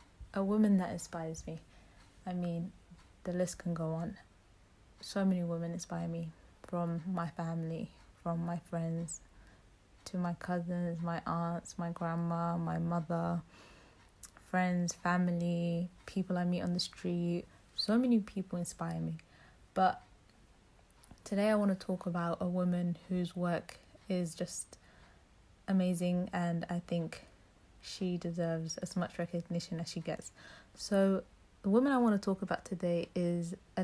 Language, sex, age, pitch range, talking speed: English, female, 20-39, 170-185 Hz, 145 wpm